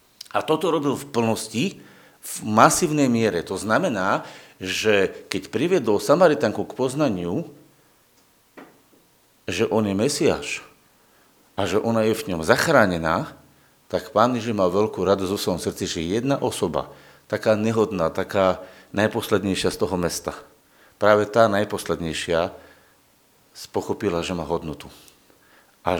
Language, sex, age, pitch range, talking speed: Slovak, male, 50-69, 95-125 Hz, 120 wpm